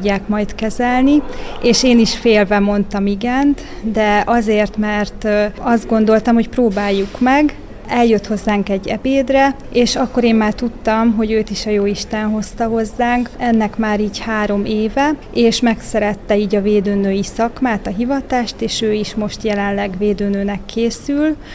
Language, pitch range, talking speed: Hungarian, 210-235 Hz, 150 wpm